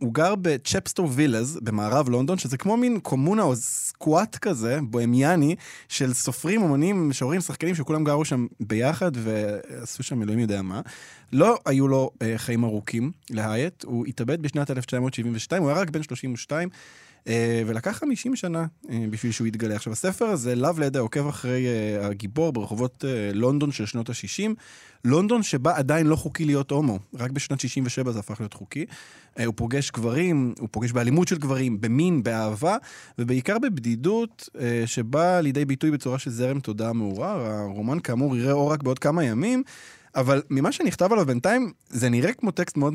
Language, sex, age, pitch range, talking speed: Hebrew, male, 20-39, 115-160 Hz, 160 wpm